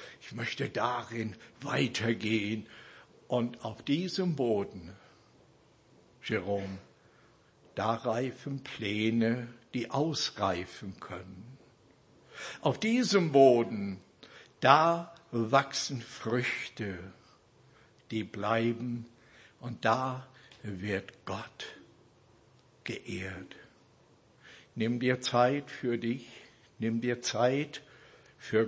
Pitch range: 105-125 Hz